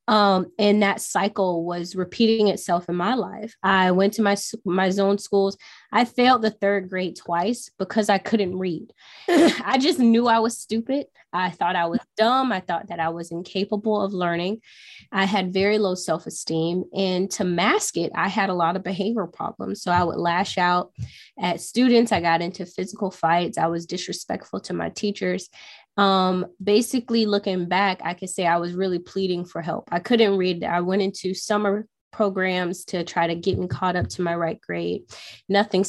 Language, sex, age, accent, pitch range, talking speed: English, female, 20-39, American, 175-215 Hz, 190 wpm